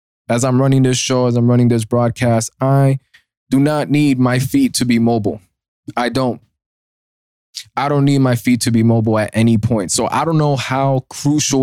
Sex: male